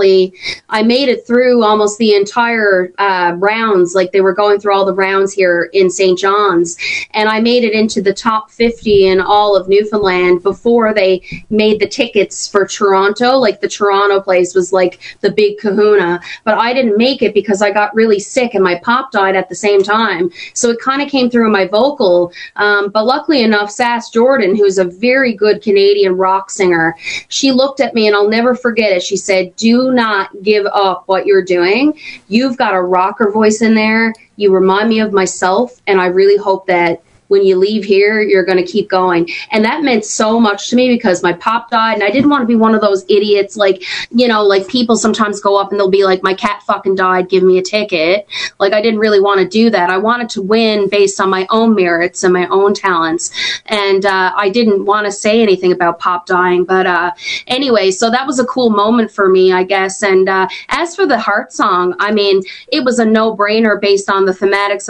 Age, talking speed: 30-49, 220 wpm